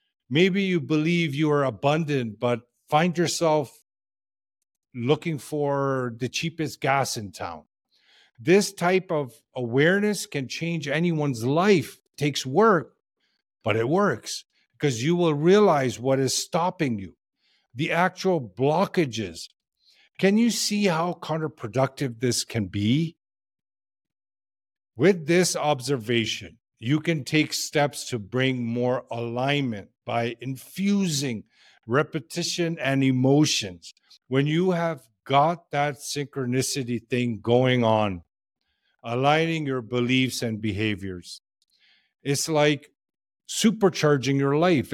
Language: English